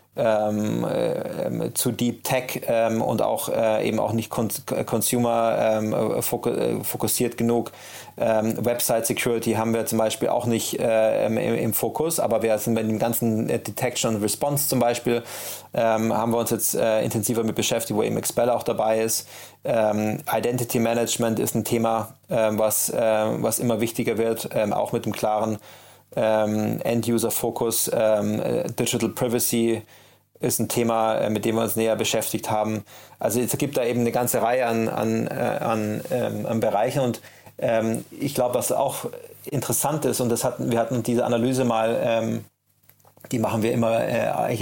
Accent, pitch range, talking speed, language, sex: German, 110-120 Hz, 165 wpm, German, male